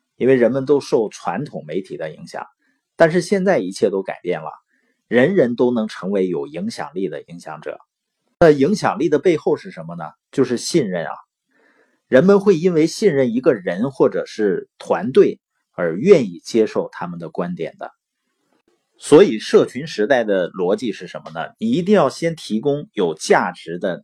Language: Chinese